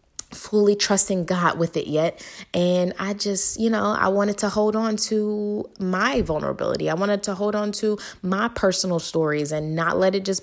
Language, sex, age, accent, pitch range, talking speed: English, female, 20-39, American, 155-215 Hz, 190 wpm